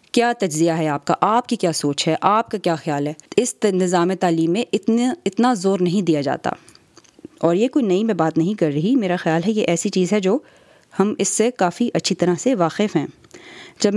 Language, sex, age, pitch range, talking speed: Urdu, female, 20-39, 175-220 Hz, 225 wpm